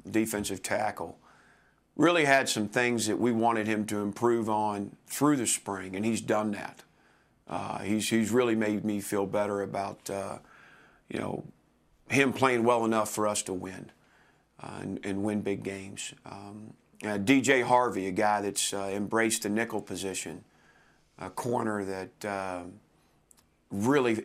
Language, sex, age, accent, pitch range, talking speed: English, male, 40-59, American, 100-115 Hz, 155 wpm